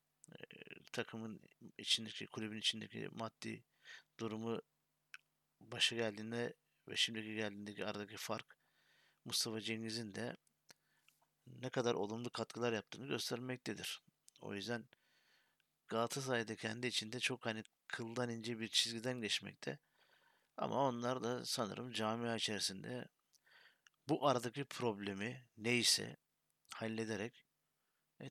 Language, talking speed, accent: Turkish, 95 wpm, native